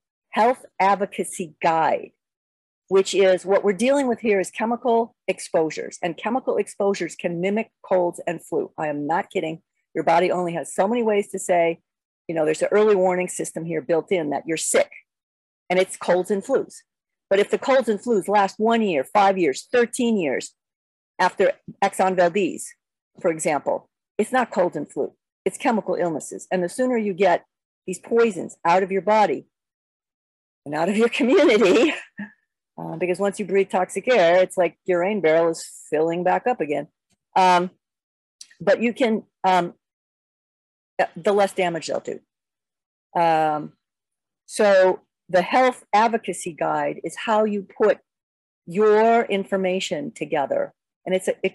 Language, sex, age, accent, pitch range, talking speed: English, female, 50-69, American, 175-215 Hz, 160 wpm